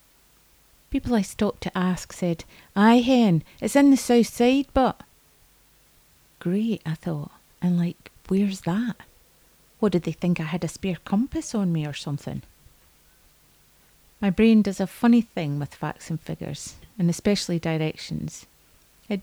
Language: English